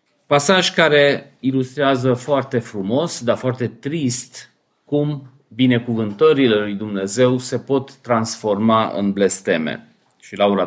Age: 40-59